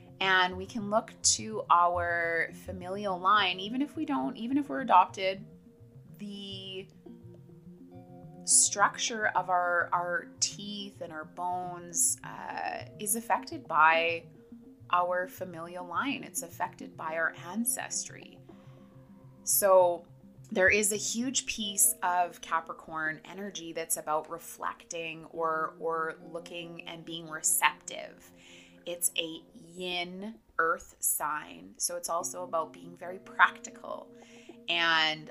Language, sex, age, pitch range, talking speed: English, female, 20-39, 155-190 Hz, 115 wpm